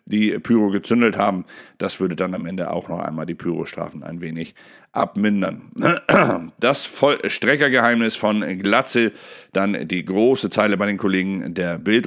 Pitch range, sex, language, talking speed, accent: 95-110 Hz, male, German, 150 wpm, German